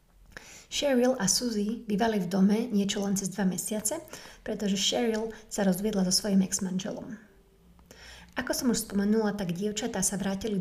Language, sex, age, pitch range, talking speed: Slovak, female, 30-49, 190-220 Hz, 145 wpm